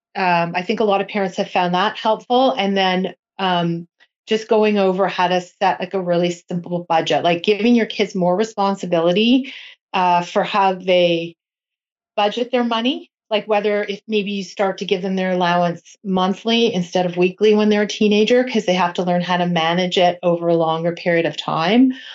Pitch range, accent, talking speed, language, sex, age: 175-210 Hz, American, 195 wpm, English, female, 30-49